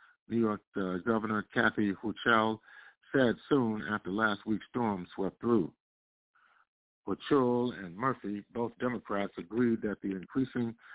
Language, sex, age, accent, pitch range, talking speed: English, male, 50-69, American, 95-120 Hz, 125 wpm